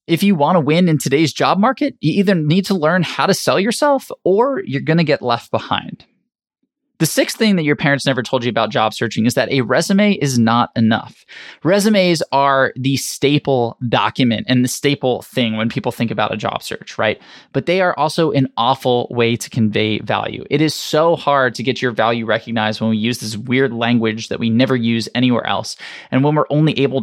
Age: 20-39